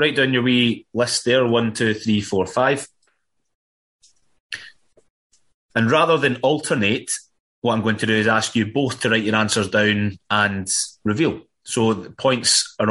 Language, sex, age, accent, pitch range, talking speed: English, male, 20-39, British, 100-130 Hz, 165 wpm